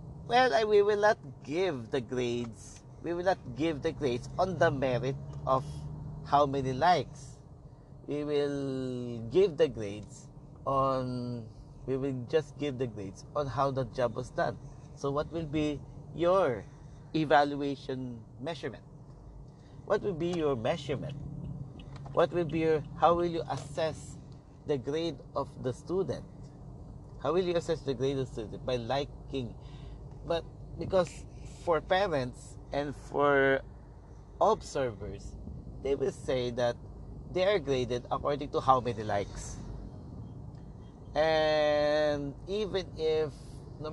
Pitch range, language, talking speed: 125-150 Hz, English, 135 wpm